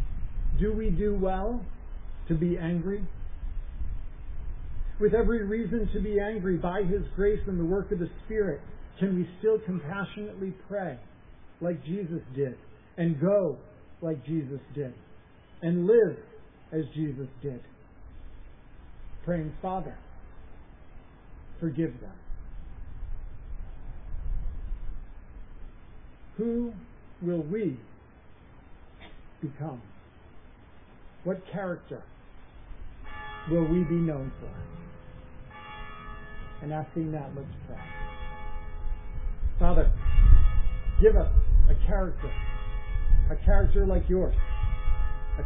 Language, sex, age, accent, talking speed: English, male, 50-69, American, 90 wpm